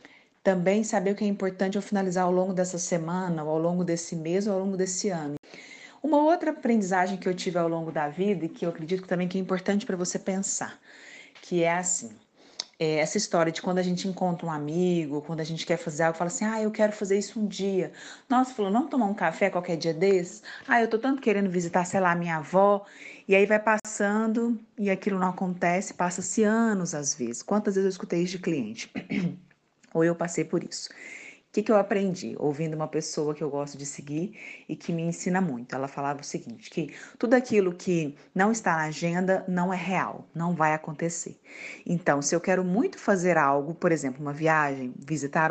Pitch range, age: 160-195 Hz, 30-49